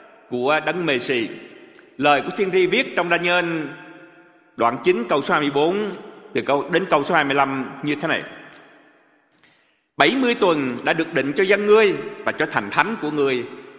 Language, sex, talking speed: Vietnamese, male, 175 wpm